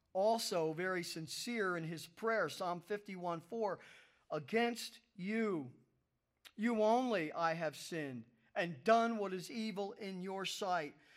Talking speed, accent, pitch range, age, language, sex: 130 wpm, American, 175-230 Hz, 40-59, English, male